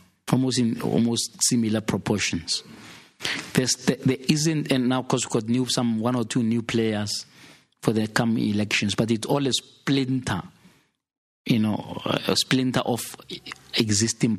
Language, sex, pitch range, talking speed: English, male, 105-120 Hz, 150 wpm